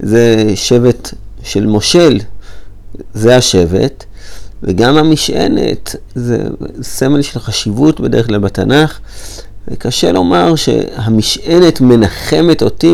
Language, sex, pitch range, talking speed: Hebrew, male, 100-125 Hz, 95 wpm